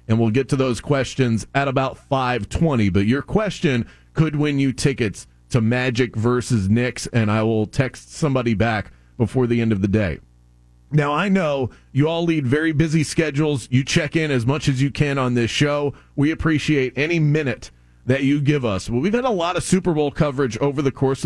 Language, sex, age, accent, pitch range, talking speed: English, male, 30-49, American, 115-155 Hz, 205 wpm